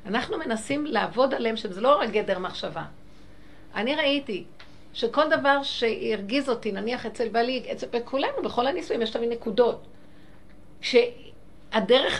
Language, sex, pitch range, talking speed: Hebrew, female, 210-265 Hz, 125 wpm